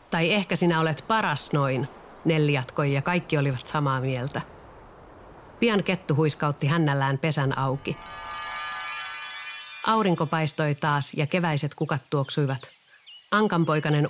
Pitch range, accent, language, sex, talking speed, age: 145-170 Hz, native, Finnish, female, 105 wpm, 40-59